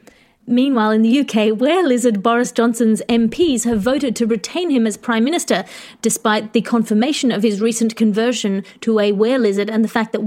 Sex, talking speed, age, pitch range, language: female, 175 wpm, 30-49, 210-245 Hz, English